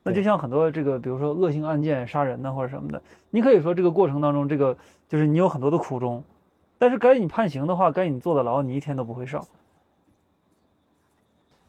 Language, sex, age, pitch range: Chinese, male, 20-39, 135-170 Hz